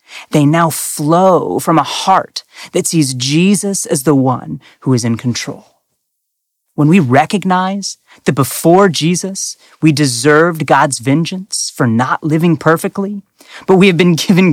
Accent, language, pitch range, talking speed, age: American, English, 135-175 Hz, 145 wpm, 30-49